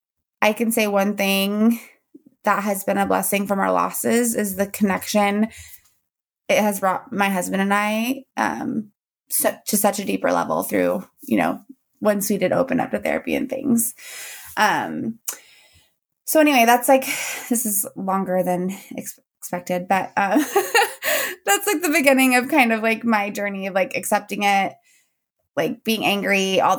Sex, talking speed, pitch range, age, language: female, 160 wpm, 195-245 Hz, 20-39, English